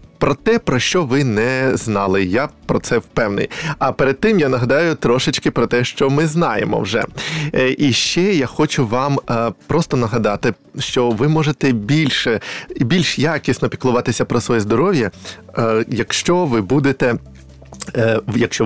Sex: male